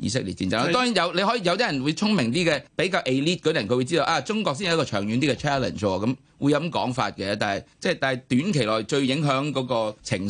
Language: Chinese